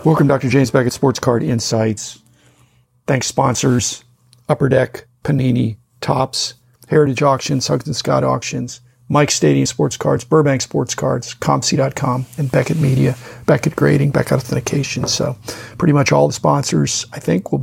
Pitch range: 120-150 Hz